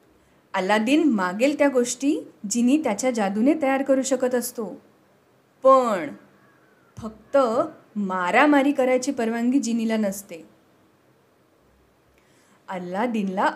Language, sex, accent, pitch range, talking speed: Marathi, female, native, 200-275 Hz, 85 wpm